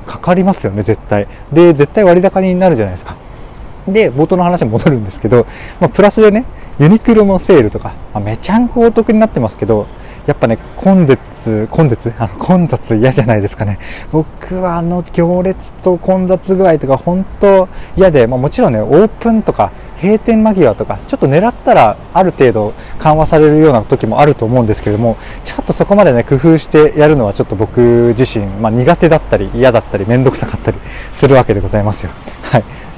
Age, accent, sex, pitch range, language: 20-39, native, male, 110-170 Hz, Japanese